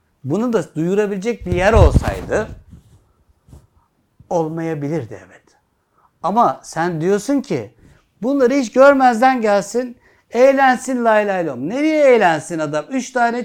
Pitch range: 150-240 Hz